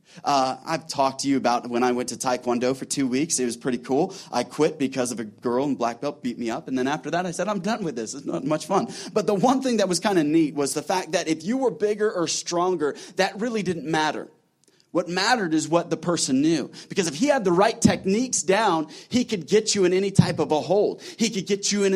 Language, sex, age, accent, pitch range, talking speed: English, male, 30-49, American, 160-225 Hz, 265 wpm